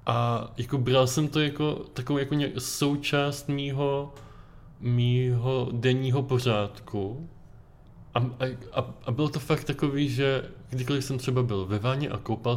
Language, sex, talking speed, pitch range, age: Czech, male, 140 wpm, 110-130 Hz, 20-39